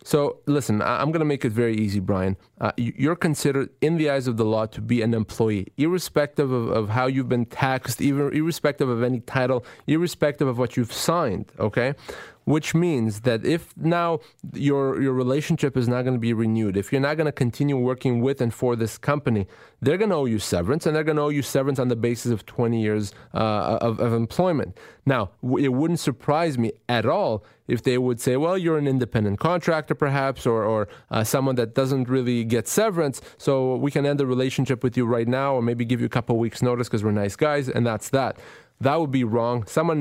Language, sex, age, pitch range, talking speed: English, male, 30-49, 115-140 Hz, 220 wpm